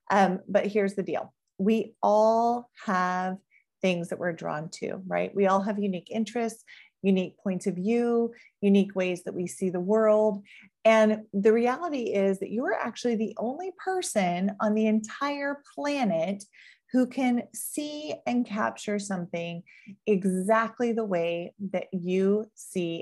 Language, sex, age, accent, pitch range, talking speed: English, female, 30-49, American, 190-235 Hz, 150 wpm